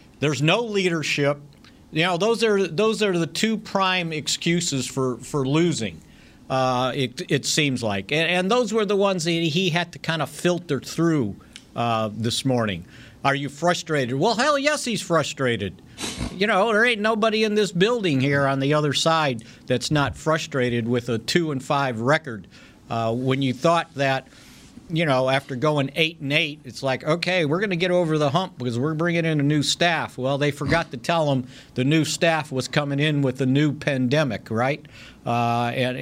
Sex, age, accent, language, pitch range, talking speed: male, 50-69, American, English, 130-170 Hz, 195 wpm